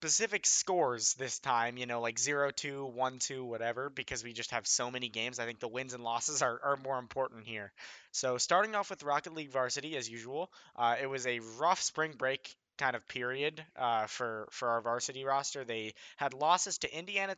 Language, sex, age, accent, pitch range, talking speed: English, male, 20-39, American, 120-145 Hz, 200 wpm